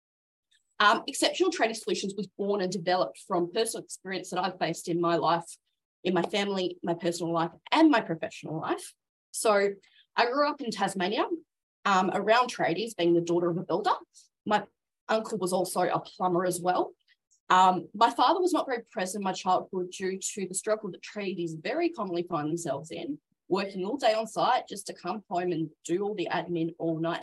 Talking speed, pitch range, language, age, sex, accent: 190 wpm, 180-230 Hz, English, 20-39, female, Australian